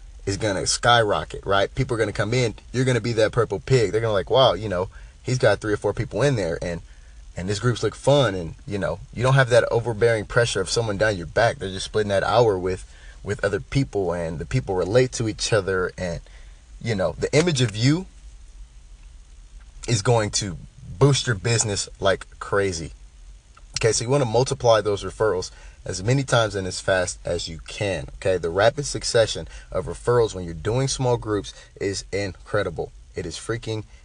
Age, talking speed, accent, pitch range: 30-49, 205 wpm, American, 85-120 Hz